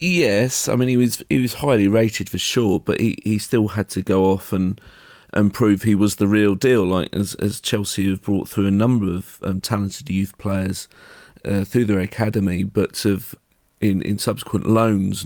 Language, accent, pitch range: English, British, 100-115 Hz